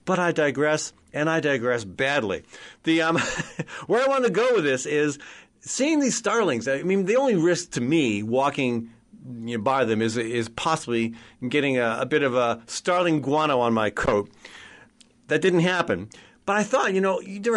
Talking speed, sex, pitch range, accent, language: 190 wpm, male, 140-205 Hz, American, English